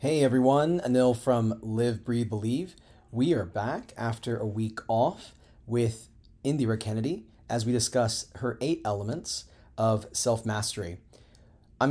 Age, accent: 30-49, American